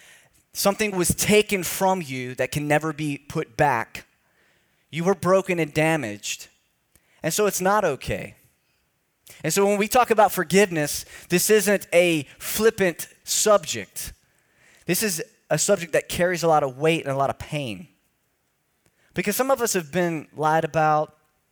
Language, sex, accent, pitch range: English, male, American, 125-165 Hz